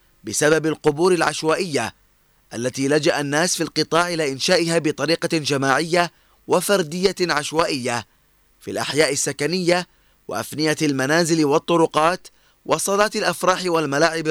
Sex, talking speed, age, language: male, 95 wpm, 20-39, Arabic